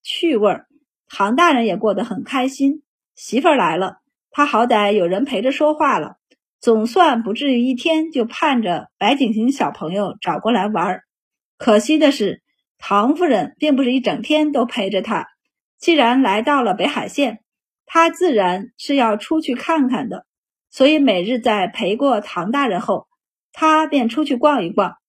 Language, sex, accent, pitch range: Chinese, female, native, 230-305 Hz